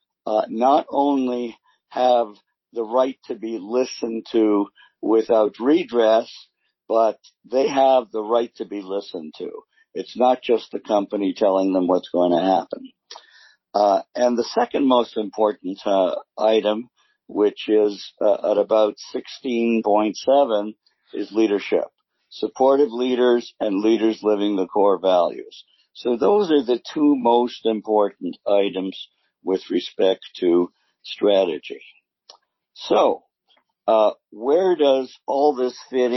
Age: 50-69